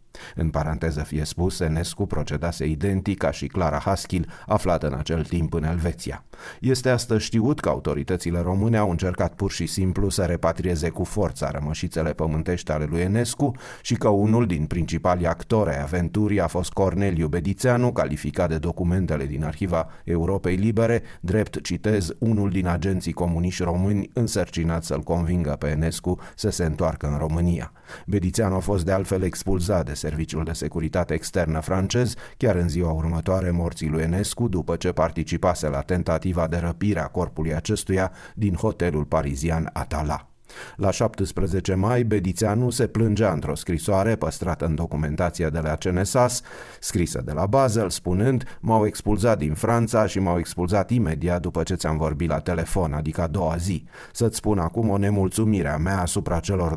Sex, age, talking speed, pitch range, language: male, 30-49, 160 wpm, 80-100 Hz, Romanian